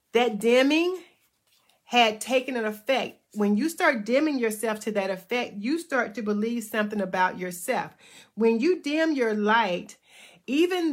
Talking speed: 150 wpm